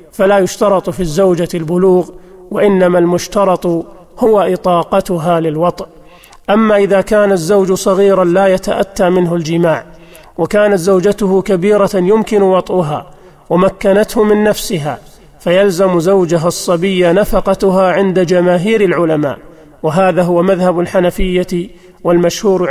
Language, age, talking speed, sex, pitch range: Arabic, 40-59, 105 wpm, male, 175-195 Hz